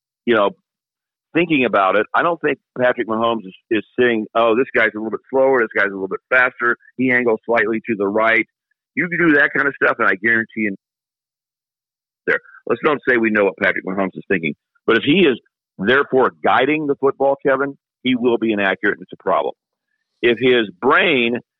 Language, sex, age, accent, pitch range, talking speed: English, male, 50-69, American, 105-135 Hz, 205 wpm